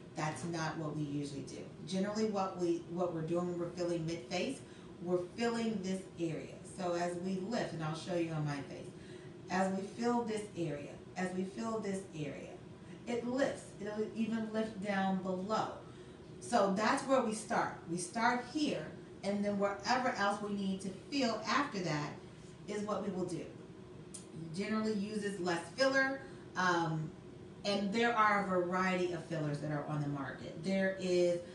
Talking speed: 165 wpm